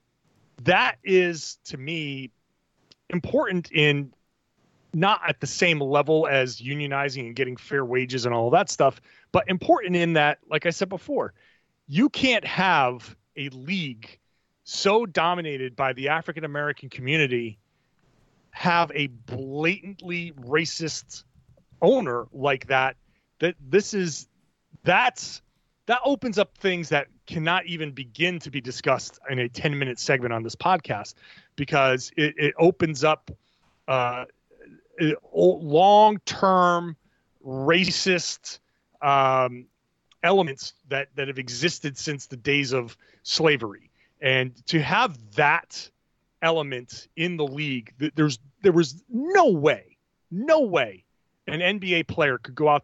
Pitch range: 130-175 Hz